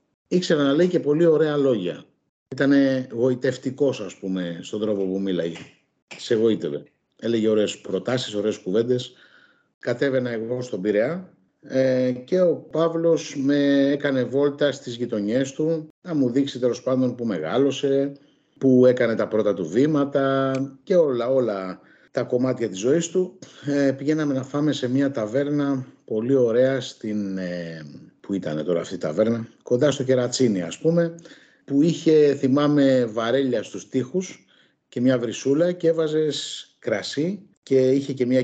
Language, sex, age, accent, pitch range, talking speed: Greek, male, 50-69, native, 115-145 Hz, 150 wpm